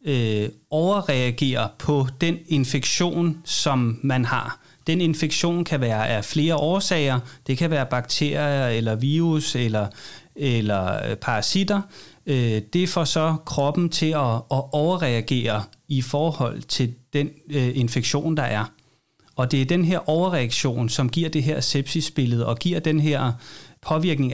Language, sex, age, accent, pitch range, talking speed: Danish, male, 30-49, native, 120-155 Hz, 135 wpm